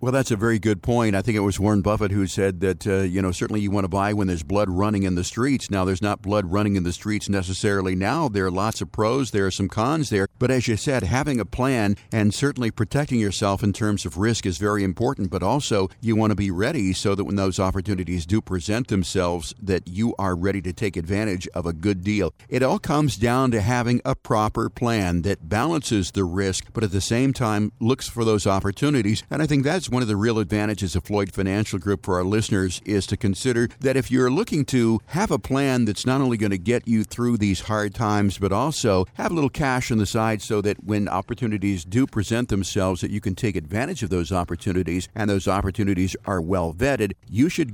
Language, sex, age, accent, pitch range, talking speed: English, male, 50-69, American, 100-120 Hz, 235 wpm